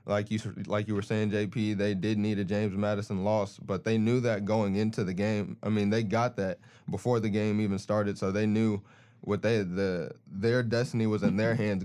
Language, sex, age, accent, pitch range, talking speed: English, male, 20-39, American, 100-110 Hz, 225 wpm